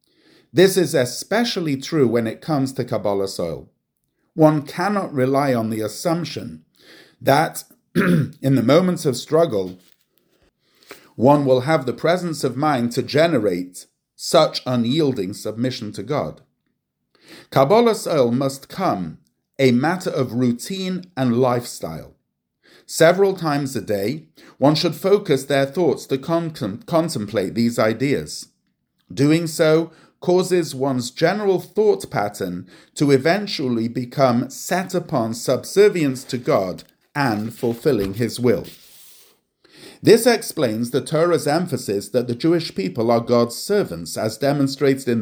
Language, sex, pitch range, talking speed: English, male, 120-165 Hz, 125 wpm